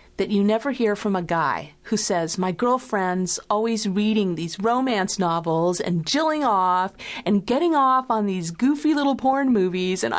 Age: 40-59